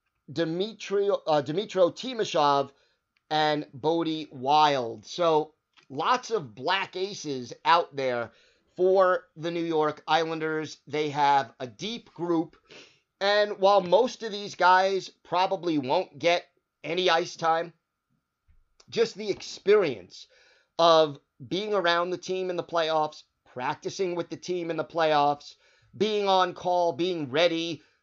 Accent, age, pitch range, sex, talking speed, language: American, 30-49, 150-185 Hz, male, 125 wpm, English